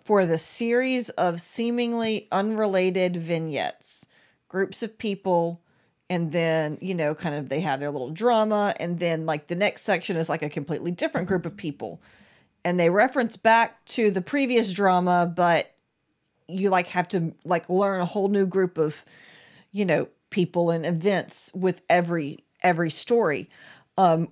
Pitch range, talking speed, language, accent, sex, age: 165-200 Hz, 160 wpm, English, American, female, 40-59